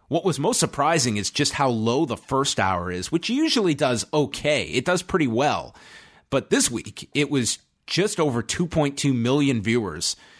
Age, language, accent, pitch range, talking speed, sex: 30-49, English, American, 105-145 Hz, 175 wpm, male